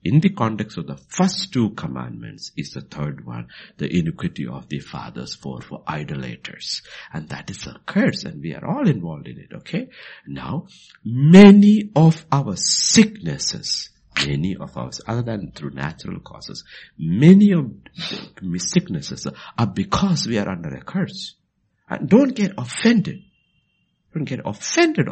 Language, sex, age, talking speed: English, male, 60-79, 155 wpm